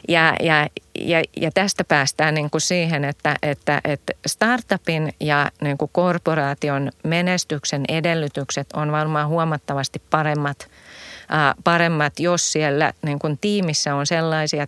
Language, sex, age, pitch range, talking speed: English, female, 30-49, 135-160 Hz, 95 wpm